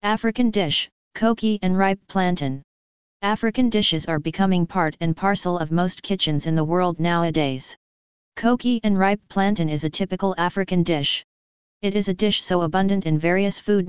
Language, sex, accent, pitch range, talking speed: English, female, American, 155-195 Hz, 165 wpm